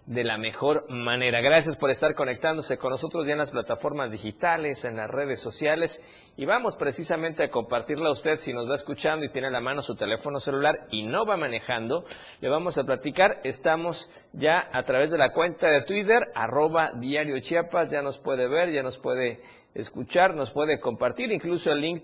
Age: 50-69